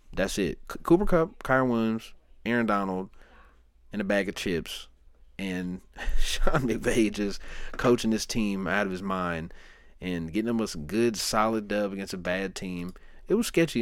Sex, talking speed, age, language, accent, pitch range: male, 165 wpm, 30-49, English, American, 90-115 Hz